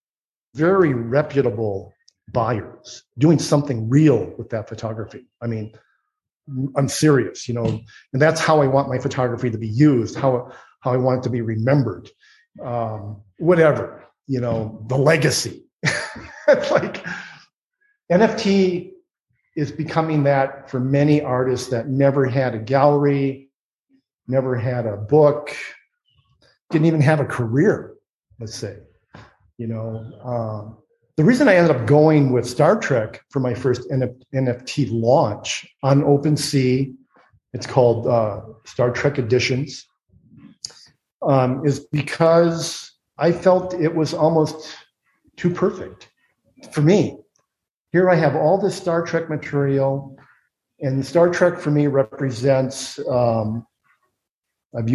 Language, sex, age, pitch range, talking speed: English, male, 50-69, 120-150 Hz, 125 wpm